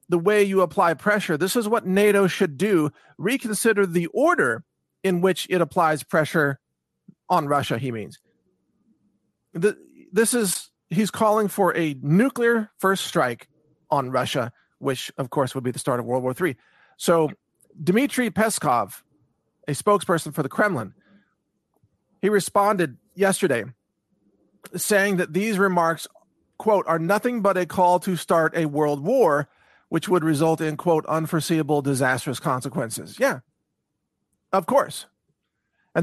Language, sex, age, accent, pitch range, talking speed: English, male, 40-59, American, 150-200 Hz, 140 wpm